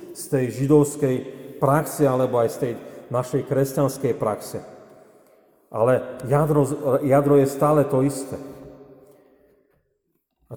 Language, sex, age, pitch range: Slovak, male, 40-59, 115-140 Hz